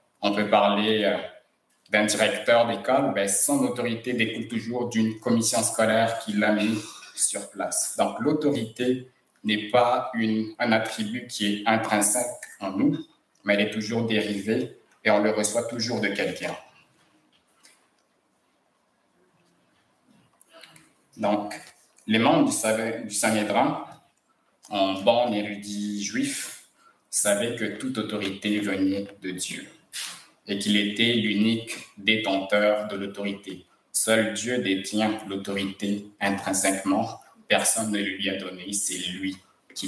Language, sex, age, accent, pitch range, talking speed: English, male, 60-79, French, 100-115 Hz, 115 wpm